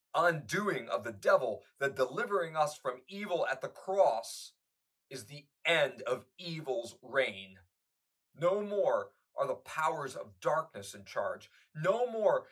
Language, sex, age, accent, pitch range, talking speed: English, male, 30-49, American, 130-205 Hz, 140 wpm